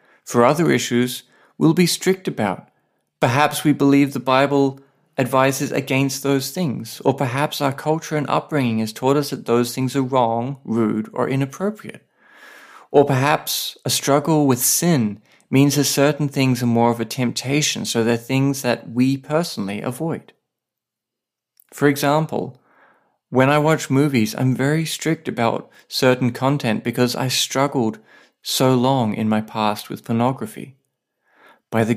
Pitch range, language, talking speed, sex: 115-145 Hz, English, 150 wpm, male